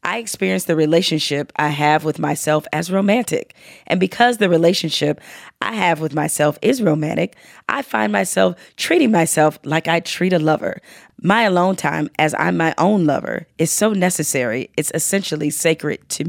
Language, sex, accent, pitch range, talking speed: English, female, American, 160-220 Hz, 165 wpm